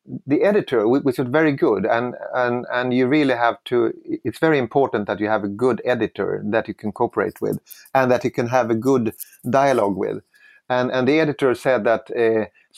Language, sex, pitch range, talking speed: English, male, 120-155 Hz, 200 wpm